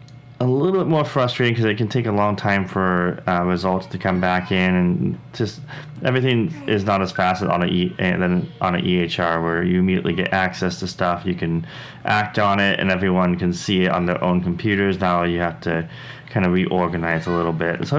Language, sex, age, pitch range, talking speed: English, male, 20-39, 90-110 Hz, 215 wpm